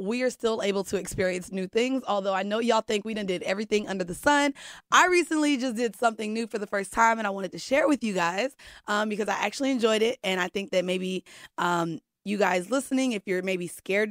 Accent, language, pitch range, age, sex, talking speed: American, English, 185-225 Hz, 20-39, female, 245 wpm